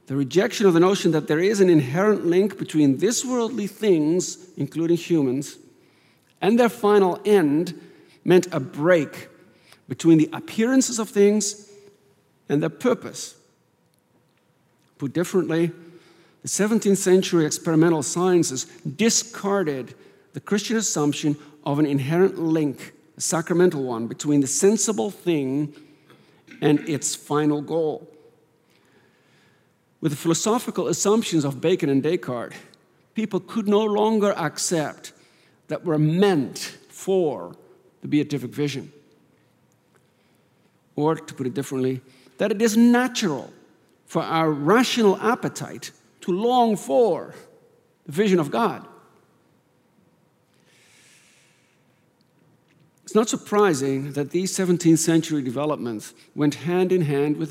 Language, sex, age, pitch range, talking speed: English, male, 50-69, 150-200 Hz, 115 wpm